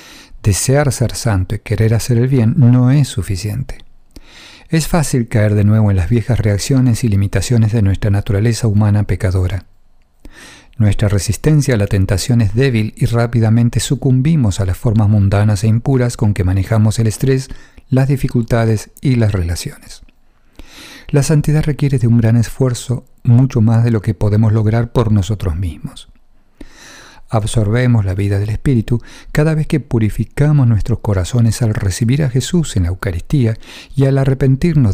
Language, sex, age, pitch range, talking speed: English, male, 50-69, 105-130 Hz, 155 wpm